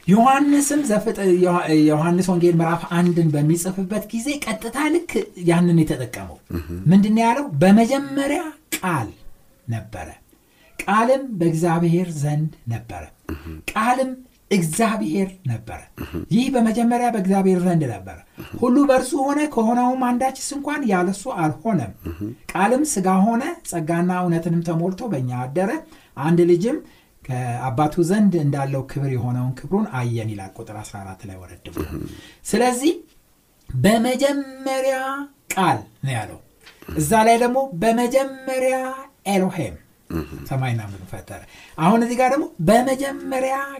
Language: Amharic